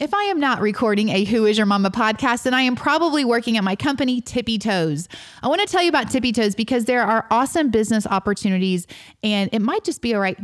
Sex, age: female, 30-49